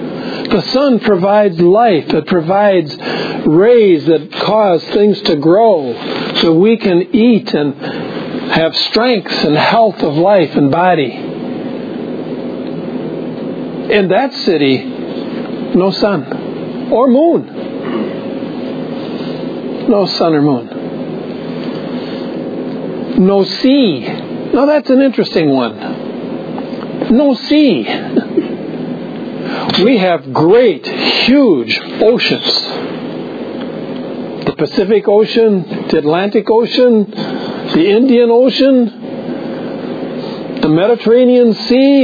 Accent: American